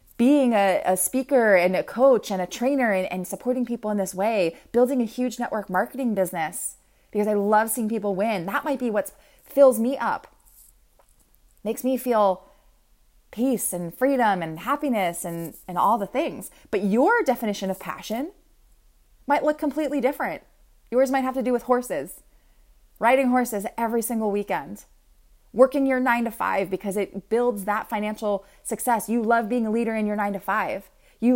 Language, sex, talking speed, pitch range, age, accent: English, female, 170 wpm, 205-265 Hz, 30-49, American